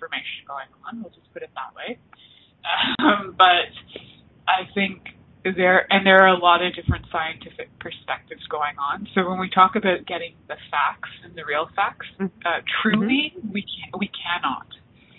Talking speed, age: 165 wpm, 20-39